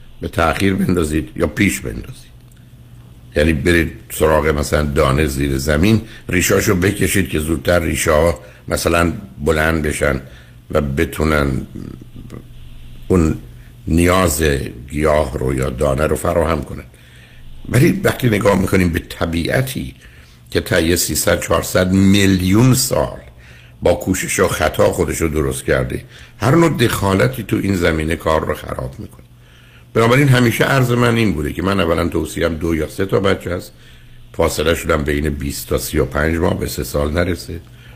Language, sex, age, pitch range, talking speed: Persian, male, 60-79, 70-100 Hz, 140 wpm